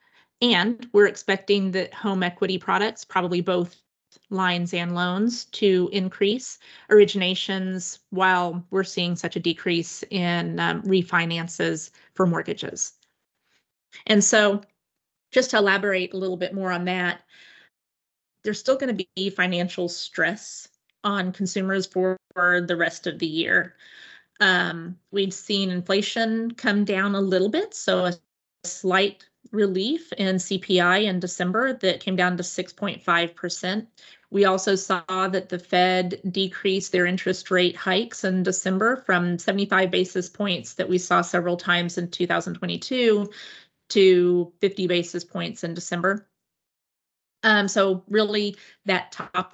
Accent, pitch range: American, 180-205 Hz